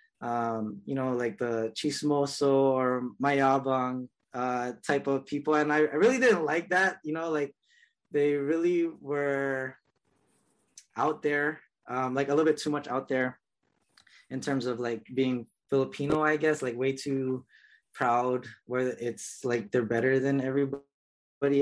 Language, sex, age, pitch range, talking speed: English, male, 20-39, 120-140 Hz, 155 wpm